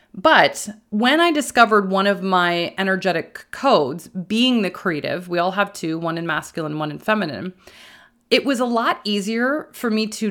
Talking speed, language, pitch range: 175 wpm, English, 175-220 Hz